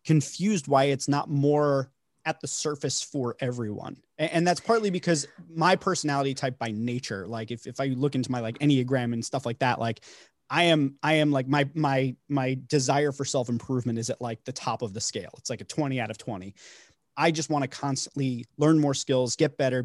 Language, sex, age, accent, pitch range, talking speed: English, male, 30-49, American, 120-160 Hz, 210 wpm